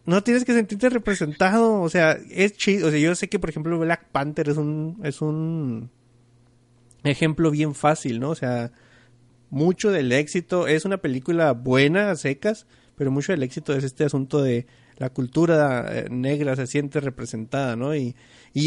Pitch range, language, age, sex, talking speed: 130-170 Hz, English, 30-49, male, 170 wpm